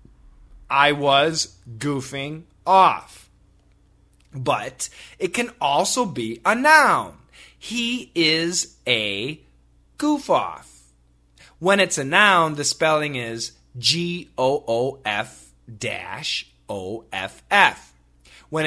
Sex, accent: male, American